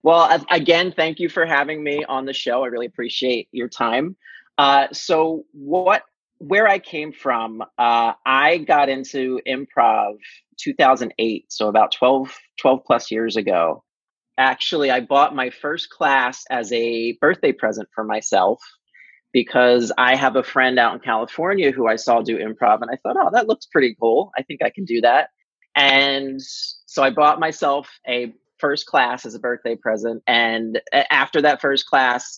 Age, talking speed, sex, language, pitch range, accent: 30-49, 170 wpm, male, English, 115-150 Hz, American